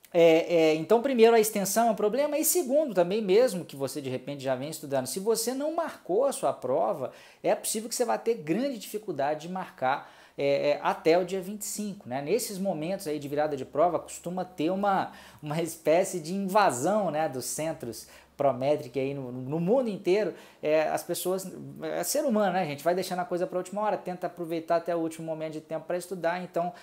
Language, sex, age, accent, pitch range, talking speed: Portuguese, male, 20-39, Brazilian, 140-200 Hz, 210 wpm